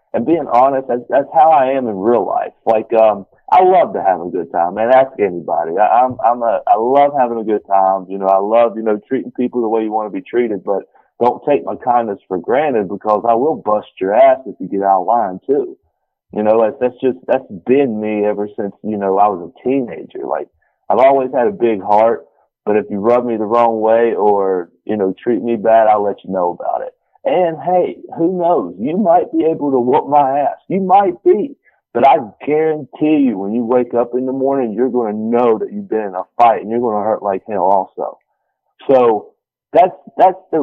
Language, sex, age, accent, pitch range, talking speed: English, male, 40-59, American, 105-130 Hz, 235 wpm